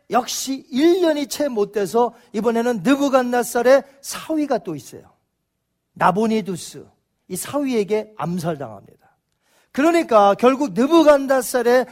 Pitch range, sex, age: 205-280 Hz, male, 40-59